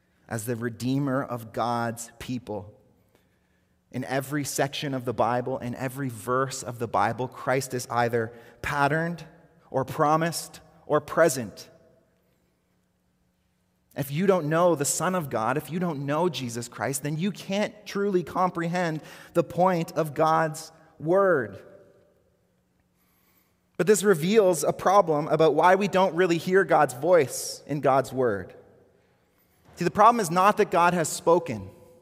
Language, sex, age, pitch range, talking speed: English, male, 30-49, 140-205 Hz, 140 wpm